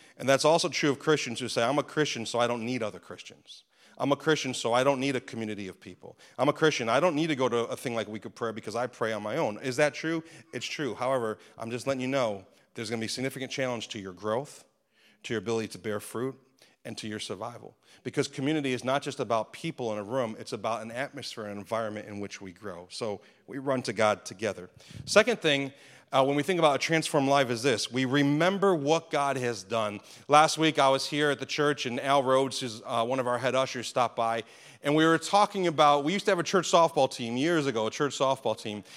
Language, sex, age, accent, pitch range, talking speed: English, male, 40-59, American, 115-150 Hz, 250 wpm